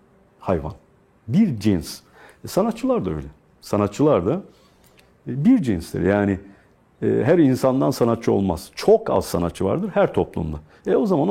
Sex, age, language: male, 50-69, Turkish